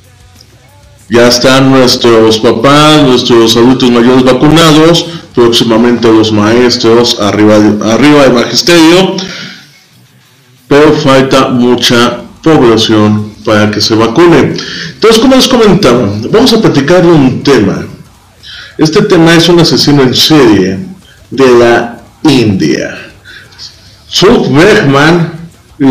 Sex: male